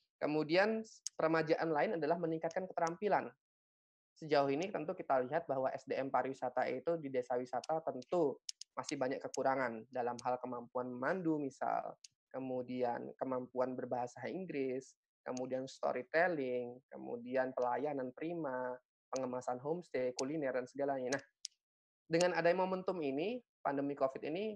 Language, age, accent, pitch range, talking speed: Indonesian, 20-39, native, 130-160 Hz, 120 wpm